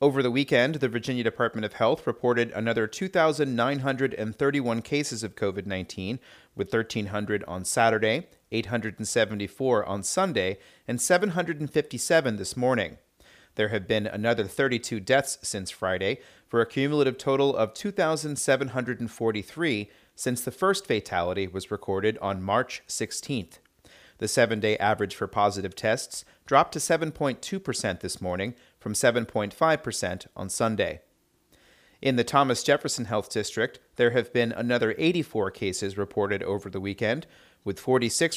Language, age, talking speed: English, 30-49, 125 wpm